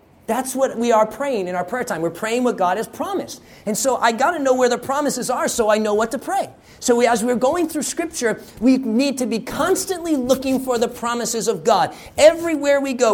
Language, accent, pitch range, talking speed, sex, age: English, American, 175-255 Hz, 235 wpm, male, 30-49